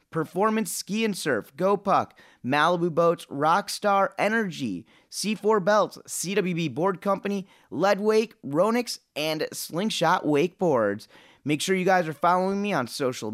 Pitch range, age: 140-200 Hz, 30-49